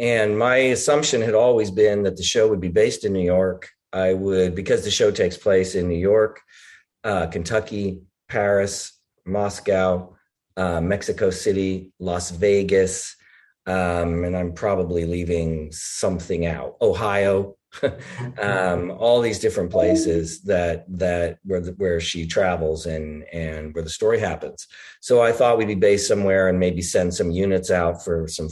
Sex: male